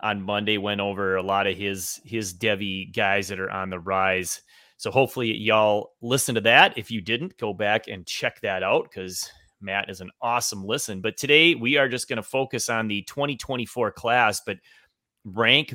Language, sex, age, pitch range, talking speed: English, male, 30-49, 100-130 Hz, 195 wpm